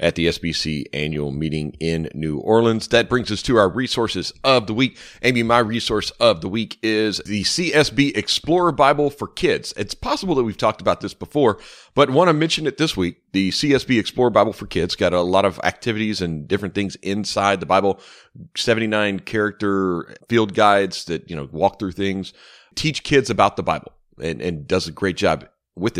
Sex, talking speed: male, 195 wpm